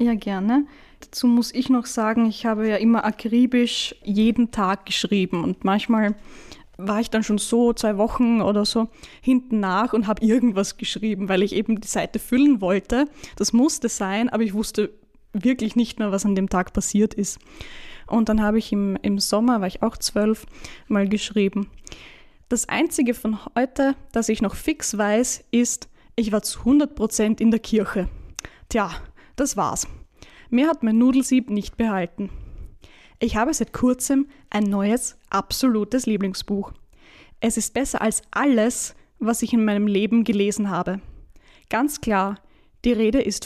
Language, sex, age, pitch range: German, female, 10-29, 205-240 Hz